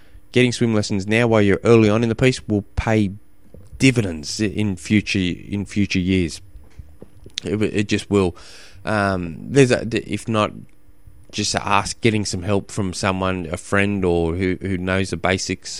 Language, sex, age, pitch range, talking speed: English, male, 20-39, 90-110 Hz, 165 wpm